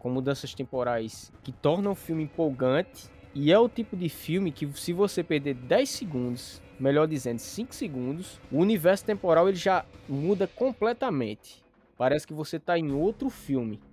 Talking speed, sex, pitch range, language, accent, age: 165 wpm, male, 130-175 Hz, Portuguese, Brazilian, 20-39